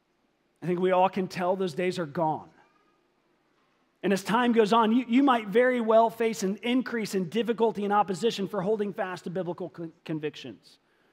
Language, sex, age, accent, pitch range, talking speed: English, male, 40-59, American, 165-210 Hz, 180 wpm